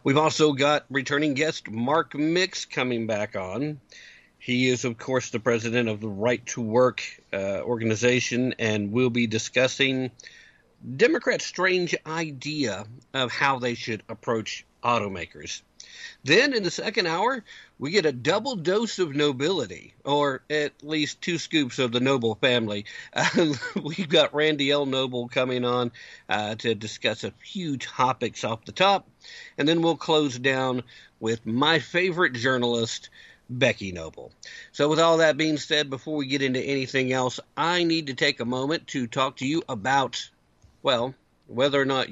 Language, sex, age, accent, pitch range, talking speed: English, male, 50-69, American, 120-150 Hz, 160 wpm